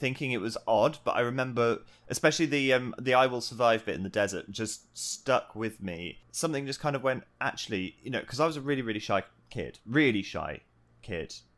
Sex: male